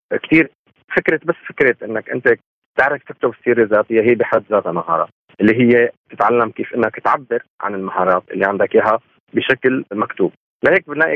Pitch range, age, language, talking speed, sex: 110-155 Hz, 30-49, Arabic, 155 wpm, male